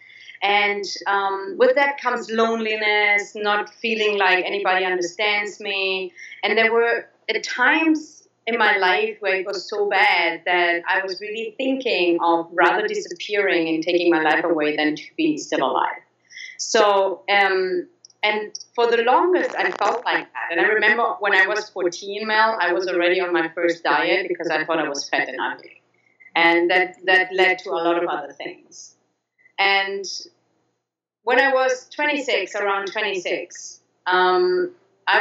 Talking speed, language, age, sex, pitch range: 165 wpm, English, 30-49, female, 180-275 Hz